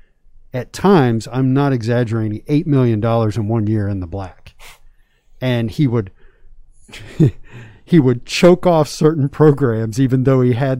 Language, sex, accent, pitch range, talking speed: English, male, American, 110-140 Hz, 150 wpm